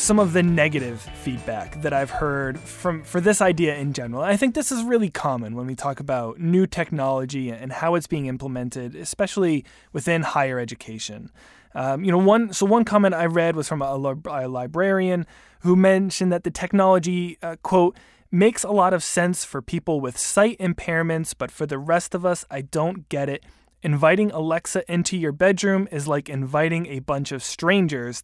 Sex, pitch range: male, 140-195 Hz